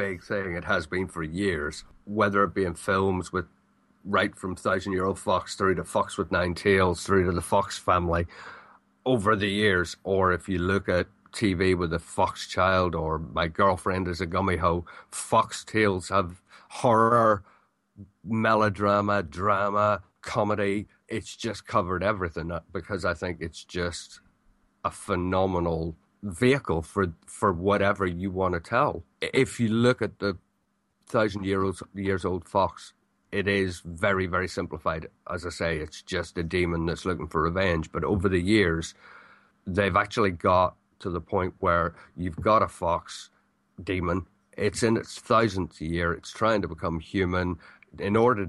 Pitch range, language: 90-100 Hz, English